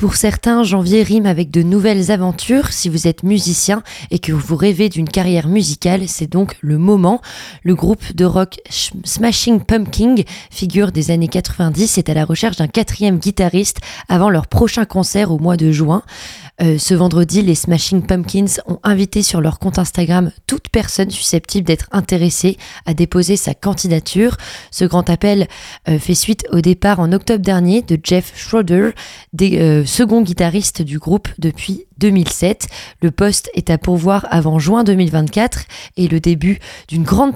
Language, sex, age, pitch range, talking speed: French, female, 20-39, 165-205 Hz, 165 wpm